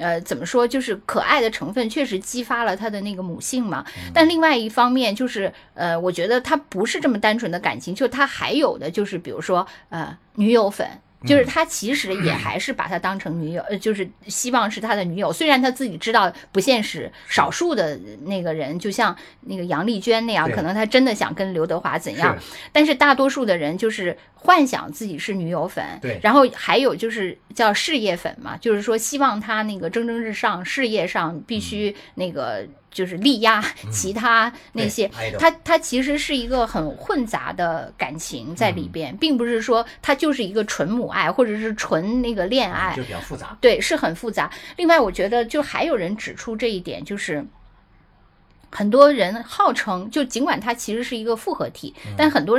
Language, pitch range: Chinese, 190-260 Hz